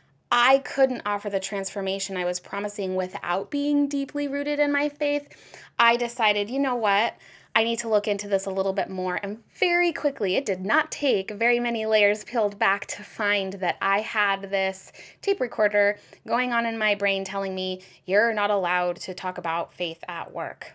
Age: 20-39